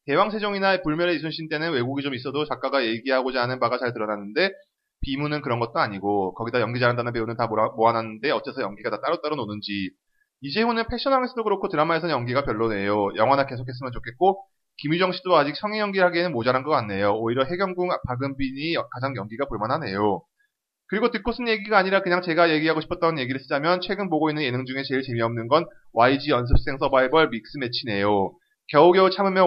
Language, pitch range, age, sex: Korean, 120-185 Hz, 30-49, male